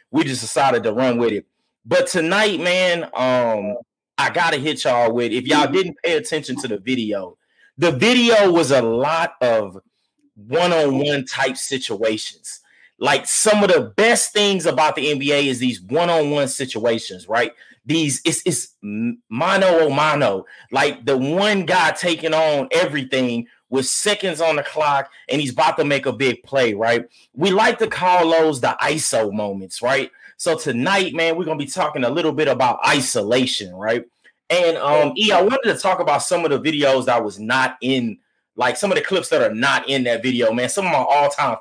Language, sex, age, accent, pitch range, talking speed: English, male, 30-49, American, 125-175 Hz, 190 wpm